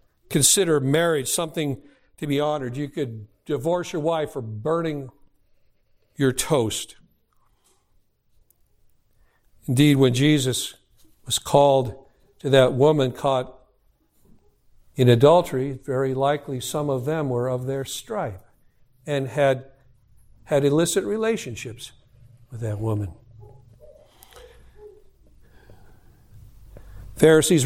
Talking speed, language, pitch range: 95 wpm, English, 120-170 Hz